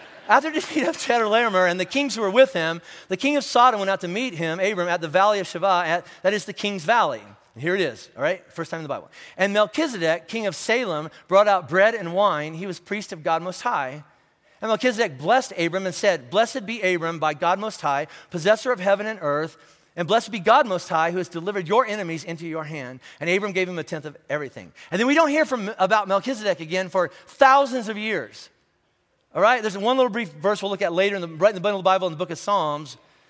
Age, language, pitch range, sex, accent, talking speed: 40-59, English, 170-220 Hz, male, American, 250 wpm